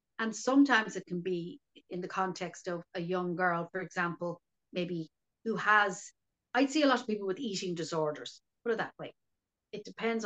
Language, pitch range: English, 175-215 Hz